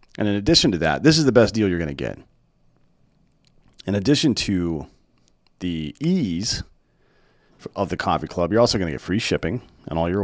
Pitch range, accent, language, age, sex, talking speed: 80-105 Hz, American, English, 40-59, male, 195 wpm